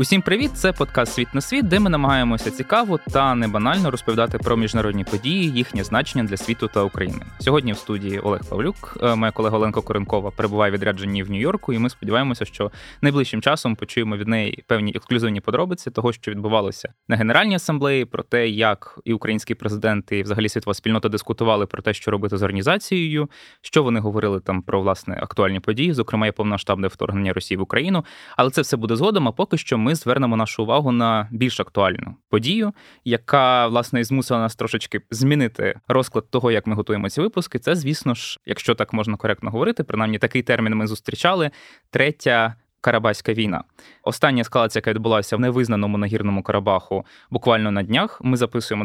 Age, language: 20-39, Ukrainian